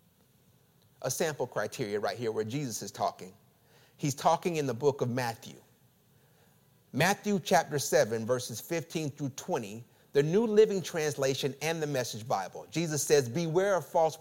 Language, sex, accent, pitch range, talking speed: English, male, American, 135-185 Hz, 150 wpm